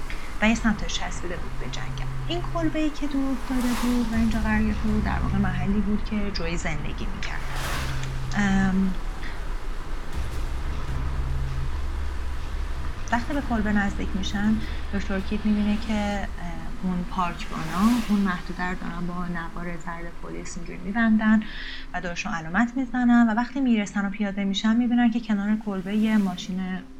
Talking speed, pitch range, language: 135 wpm, 175-230 Hz, Persian